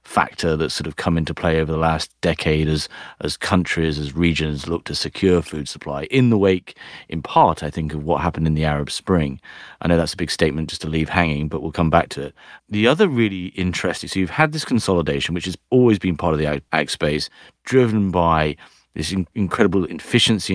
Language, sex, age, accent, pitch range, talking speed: English, male, 30-49, British, 80-95 Hz, 220 wpm